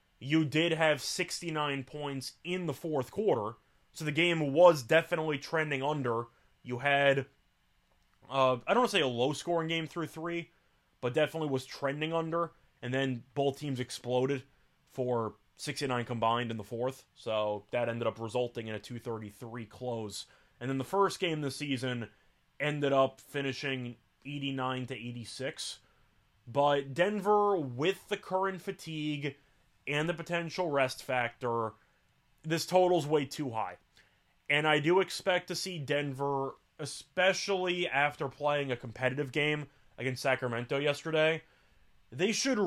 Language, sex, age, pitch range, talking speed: English, male, 20-39, 125-160 Hz, 140 wpm